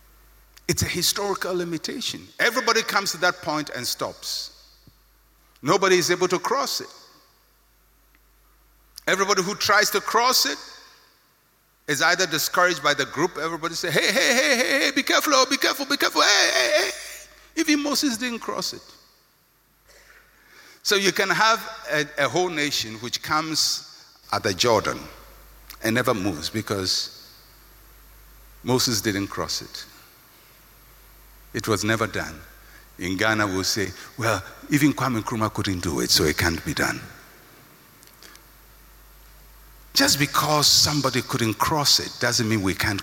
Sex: male